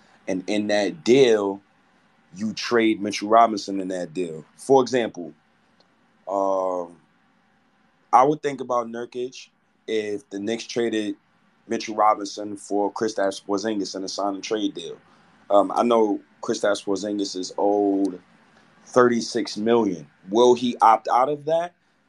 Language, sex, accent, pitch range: English, male, American, 100-120 Hz